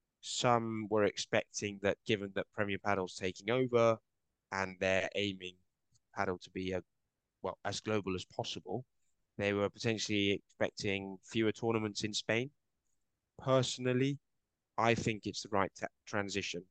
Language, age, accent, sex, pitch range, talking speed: English, 20-39, British, male, 100-115 Hz, 135 wpm